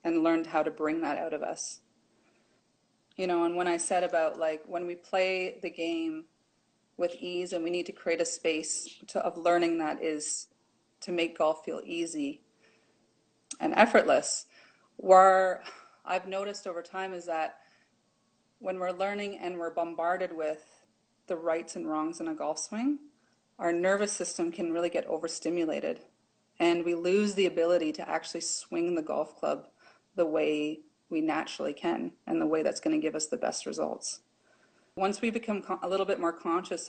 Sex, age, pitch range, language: female, 30-49, 165-190 Hz, English